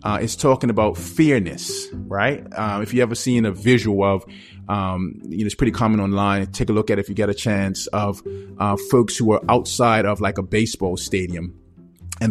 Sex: male